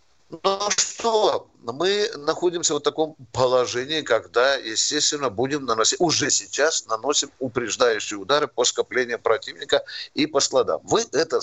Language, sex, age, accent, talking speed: Russian, male, 60-79, native, 125 wpm